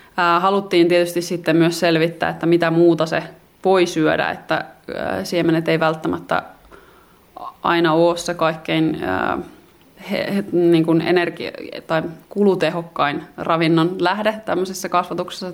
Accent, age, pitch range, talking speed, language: native, 20-39, 160-180 Hz, 110 wpm, Finnish